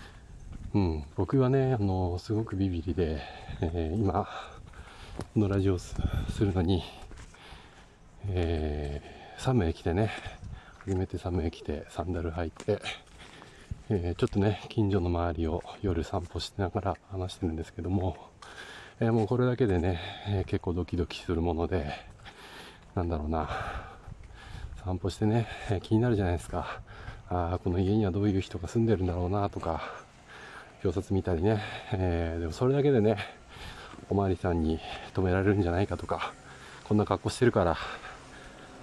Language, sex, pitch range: Japanese, male, 85-105 Hz